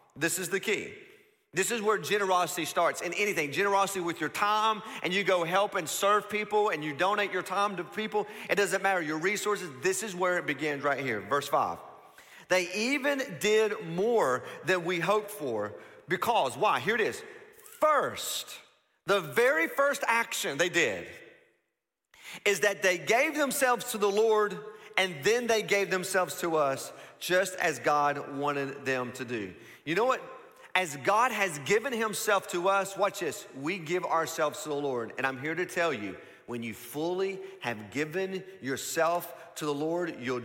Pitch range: 160-210 Hz